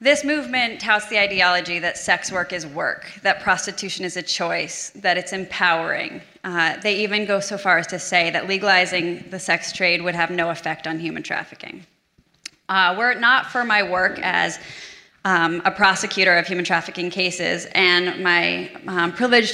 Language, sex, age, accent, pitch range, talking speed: English, female, 20-39, American, 175-205 Hz, 180 wpm